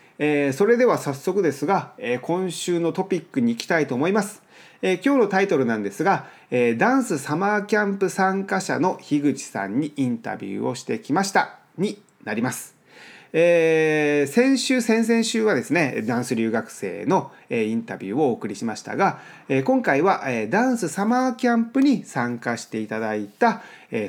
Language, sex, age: Japanese, male, 40-59